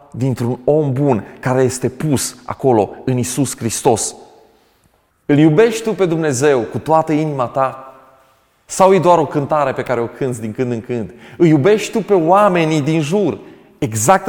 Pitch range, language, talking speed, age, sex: 140-190 Hz, Romanian, 170 wpm, 30-49, male